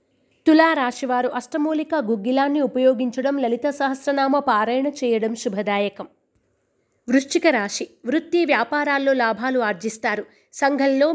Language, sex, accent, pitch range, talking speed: Telugu, female, native, 235-290 Hz, 90 wpm